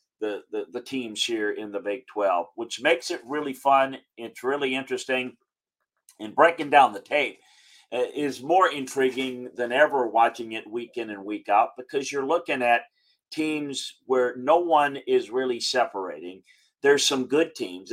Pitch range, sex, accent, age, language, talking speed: 110-155 Hz, male, American, 40-59, English, 165 wpm